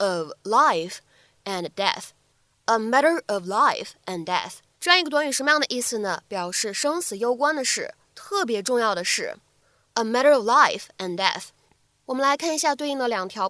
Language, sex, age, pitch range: Chinese, female, 20-39, 210-290 Hz